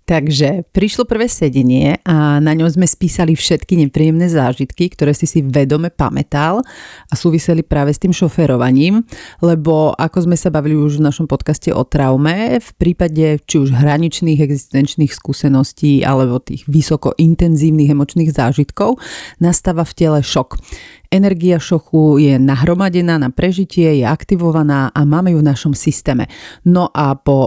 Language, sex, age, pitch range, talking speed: Slovak, female, 40-59, 145-170 Hz, 150 wpm